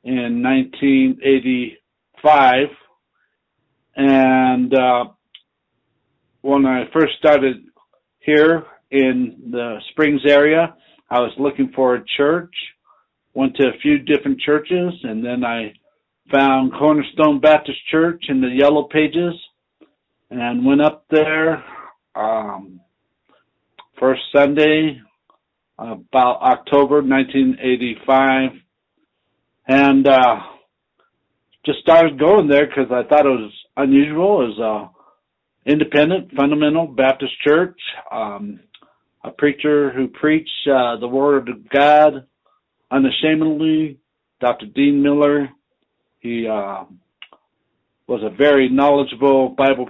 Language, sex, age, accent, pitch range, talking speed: English, male, 60-79, American, 125-150 Hz, 105 wpm